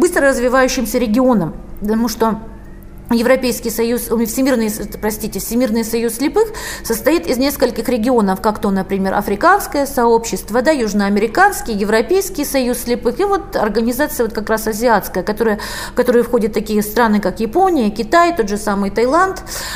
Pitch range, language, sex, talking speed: 210-260 Hz, Russian, female, 140 wpm